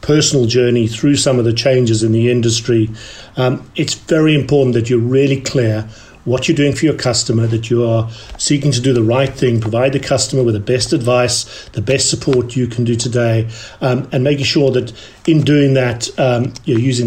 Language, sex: English, male